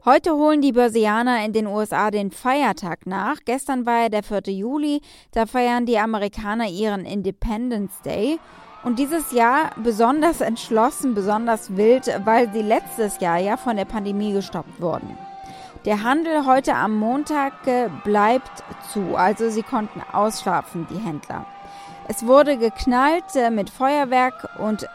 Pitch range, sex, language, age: 205-265 Hz, female, German, 20-39